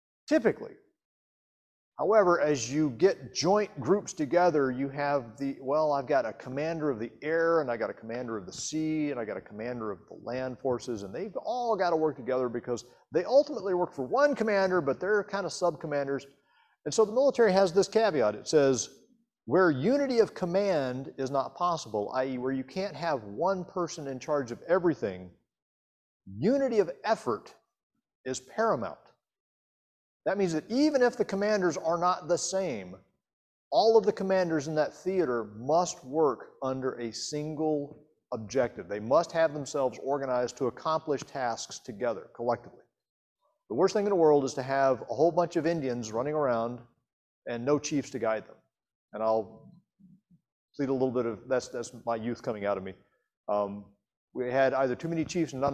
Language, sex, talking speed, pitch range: English, male, 180 wpm, 125-180 Hz